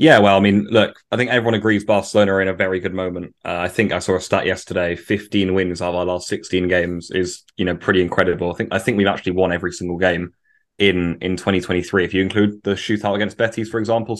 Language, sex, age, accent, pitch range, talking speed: English, male, 20-39, British, 95-105 Hz, 250 wpm